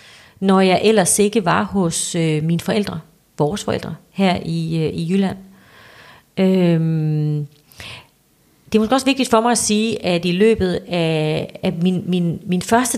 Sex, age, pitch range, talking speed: female, 30-49, 165-200 Hz, 150 wpm